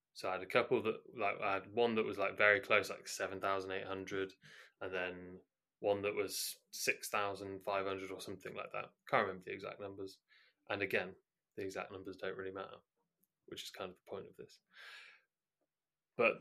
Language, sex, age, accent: English, male, 20-39, British